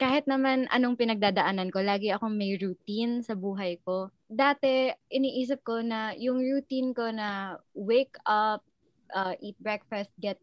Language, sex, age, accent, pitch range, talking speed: Filipino, female, 20-39, native, 190-250 Hz, 150 wpm